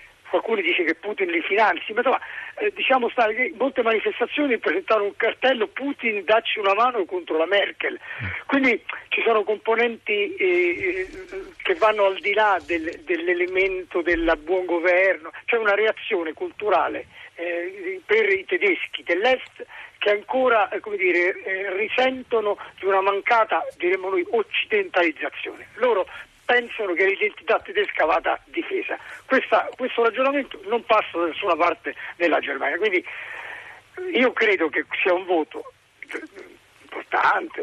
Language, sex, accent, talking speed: Italian, male, native, 135 wpm